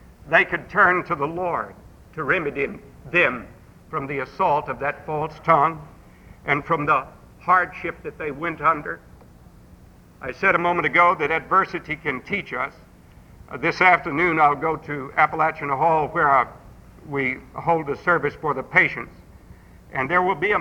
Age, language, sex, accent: 60-79, English, male, American